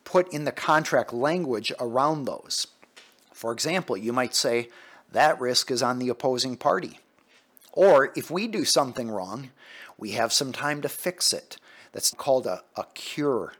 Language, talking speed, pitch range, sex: English, 165 wpm, 115-145 Hz, male